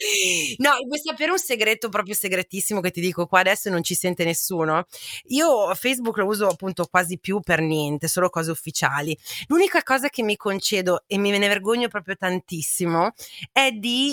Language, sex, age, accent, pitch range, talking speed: Italian, female, 30-49, native, 180-240 Hz, 180 wpm